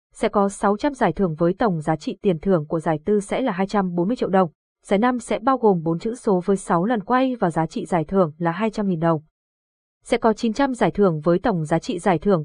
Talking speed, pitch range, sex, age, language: 240 wpm, 175-225 Hz, female, 20-39, Vietnamese